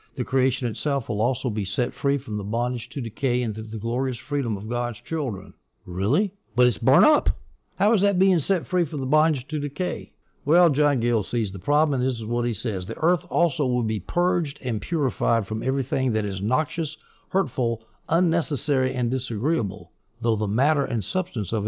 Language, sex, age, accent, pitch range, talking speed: English, male, 60-79, American, 110-140 Hz, 195 wpm